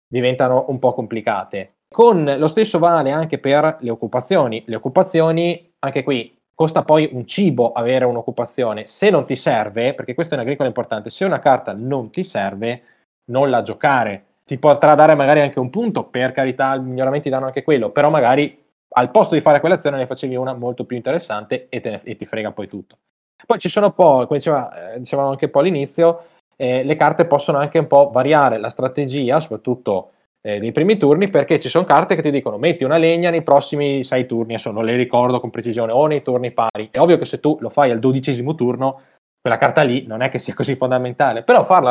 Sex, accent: male, native